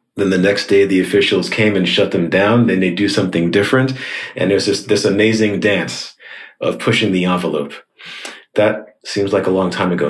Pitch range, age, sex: 90-110 Hz, 30-49, male